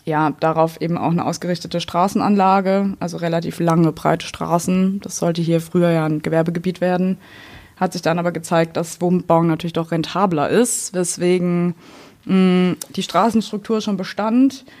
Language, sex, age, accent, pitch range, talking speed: German, female, 20-39, German, 170-195 Hz, 150 wpm